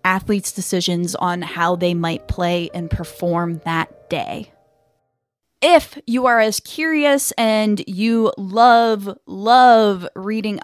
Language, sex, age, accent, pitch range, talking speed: English, female, 10-29, American, 180-225 Hz, 120 wpm